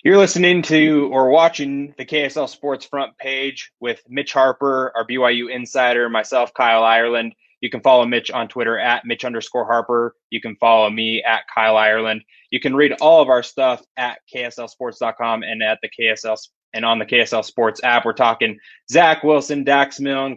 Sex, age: male, 20-39